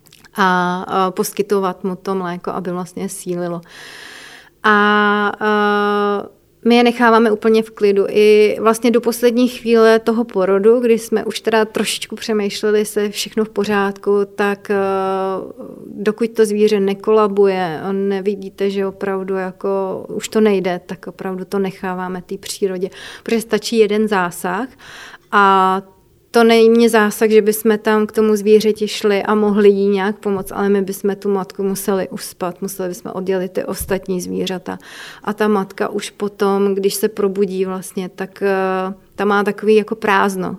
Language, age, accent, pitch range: Czech, 30-49, native, 190-215 Hz